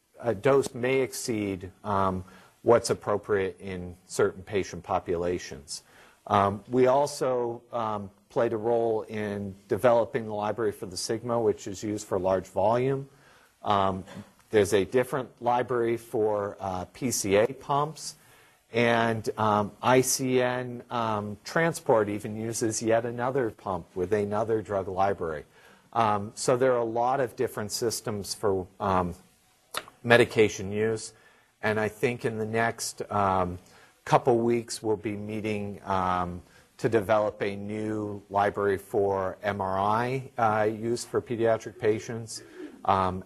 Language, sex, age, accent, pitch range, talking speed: English, male, 50-69, American, 100-120 Hz, 130 wpm